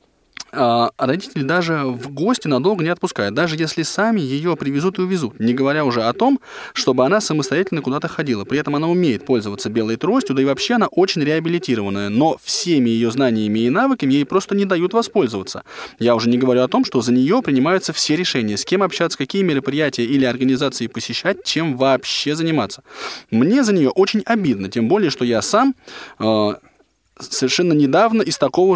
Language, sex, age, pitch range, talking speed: Russian, male, 20-39, 125-190 Hz, 180 wpm